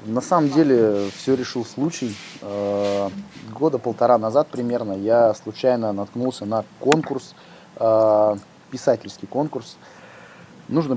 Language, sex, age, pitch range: English, male, 20-39, 100-130 Hz